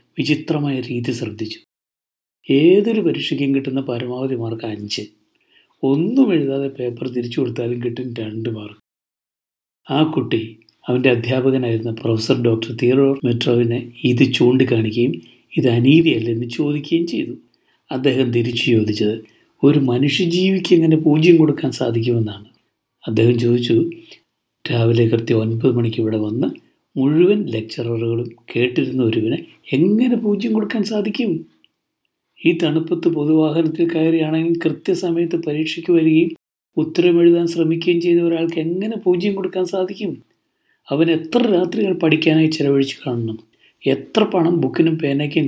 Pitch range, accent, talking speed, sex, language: 120-170 Hz, native, 105 wpm, male, Malayalam